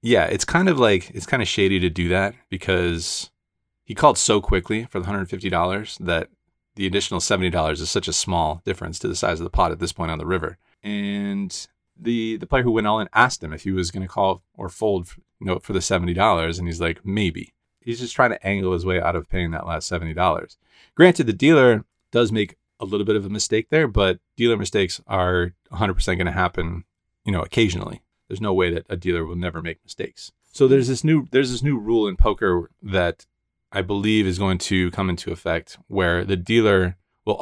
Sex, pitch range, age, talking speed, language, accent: male, 90-105 Hz, 30-49, 220 wpm, English, American